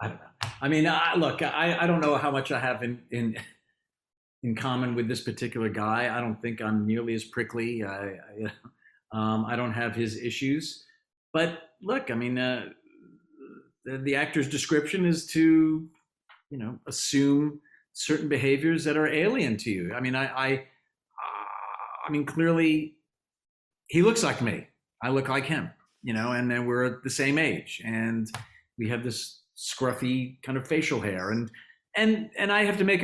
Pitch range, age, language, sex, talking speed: 110-145 Hz, 50-69, English, male, 180 wpm